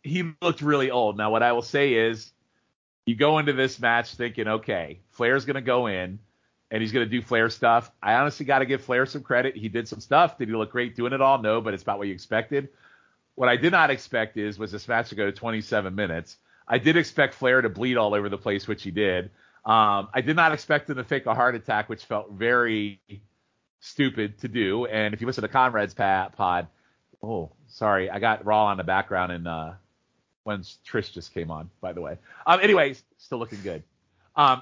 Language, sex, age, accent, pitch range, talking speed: English, male, 40-59, American, 105-140 Hz, 225 wpm